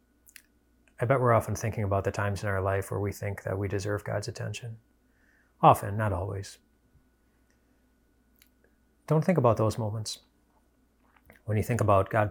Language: English